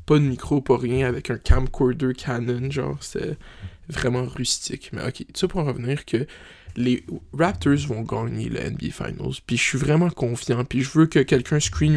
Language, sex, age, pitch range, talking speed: French, male, 20-39, 95-140 Hz, 190 wpm